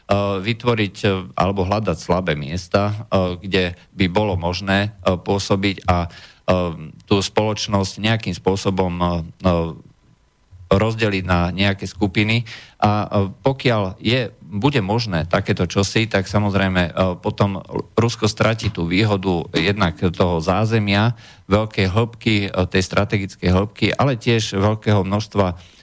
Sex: male